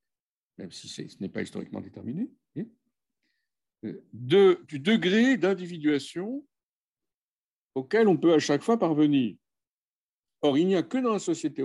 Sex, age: male, 60-79